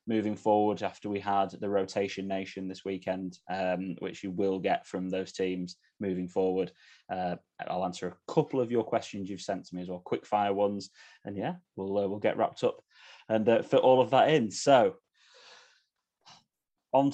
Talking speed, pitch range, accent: 185 wpm, 95-115 Hz, British